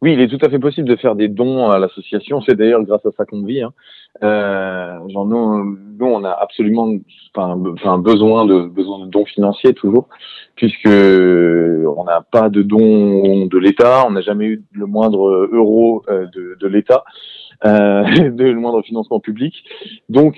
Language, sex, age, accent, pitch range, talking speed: French, male, 20-39, French, 100-125 Hz, 180 wpm